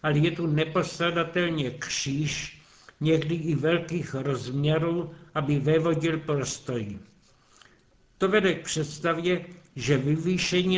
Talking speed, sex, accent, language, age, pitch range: 100 wpm, male, native, Czech, 60-79, 150-170 Hz